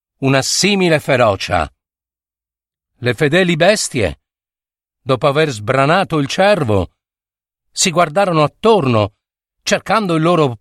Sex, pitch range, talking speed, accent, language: male, 105-175 Hz, 95 wpm, native, Italian